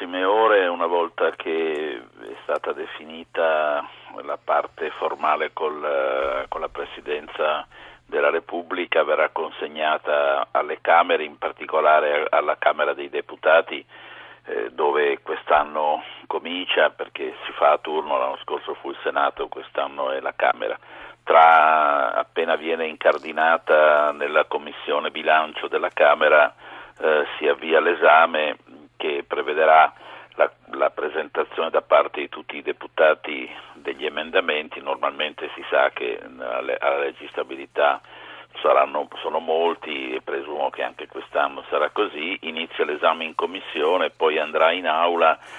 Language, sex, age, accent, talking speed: Italian, male, 50-69, native, 120 wpm